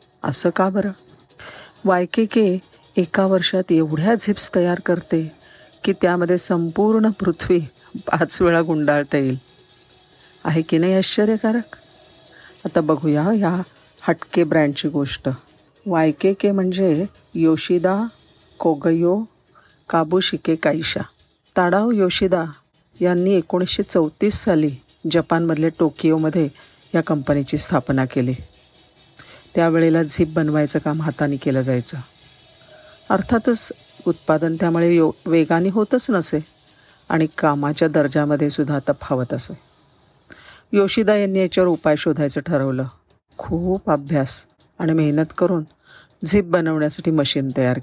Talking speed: 95 wpm